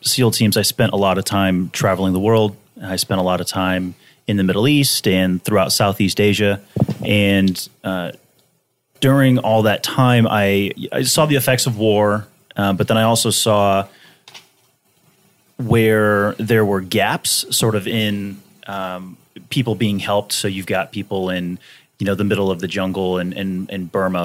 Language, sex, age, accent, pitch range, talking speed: English, male, 30-49, American, 95-115 Hz, 175 wpm